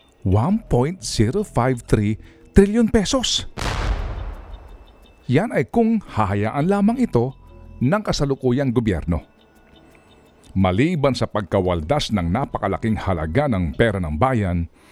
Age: 50-69